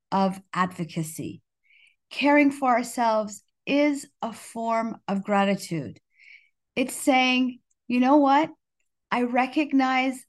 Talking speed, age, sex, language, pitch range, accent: 100 wpm, 40-59, female, English, 175-245 Hz, American